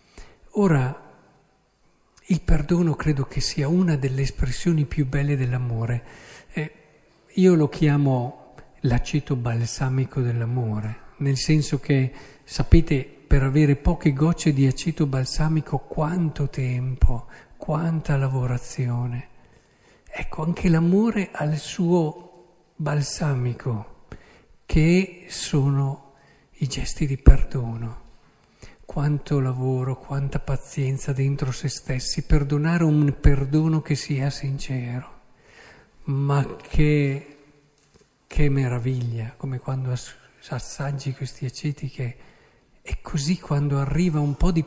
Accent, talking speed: native, 105 wpm